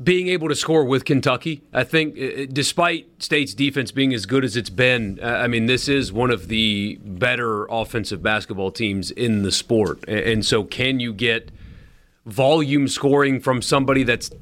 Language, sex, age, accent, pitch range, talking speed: English, male, 30-49, American, 105-130 Hz, 170 wpm